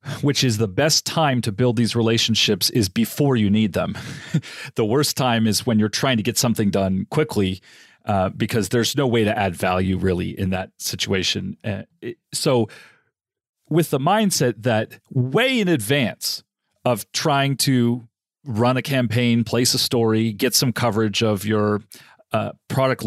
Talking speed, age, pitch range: 165 wpm, 40-59, 110-135 Hz